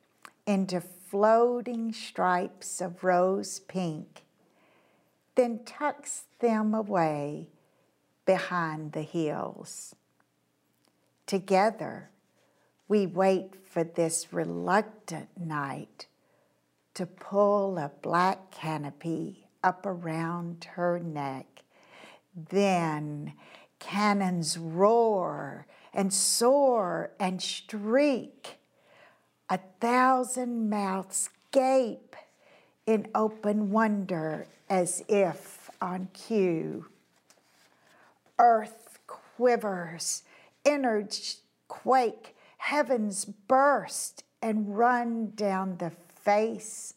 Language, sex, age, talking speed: English, female, 50-69, 75 wpm